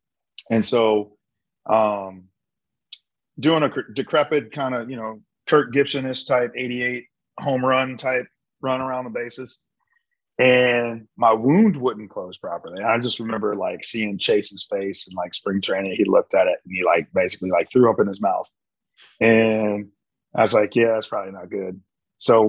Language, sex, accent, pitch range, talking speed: English, male, American, 110-130 Hz, 170 wpm